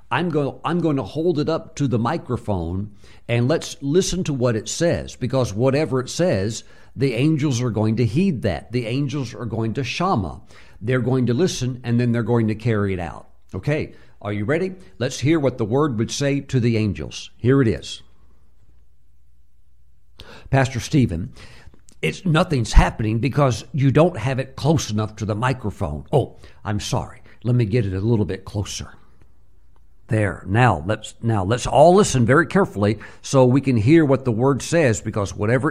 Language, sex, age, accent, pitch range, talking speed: English, male, 60-79, American, 100-135 Hz, 185 wpm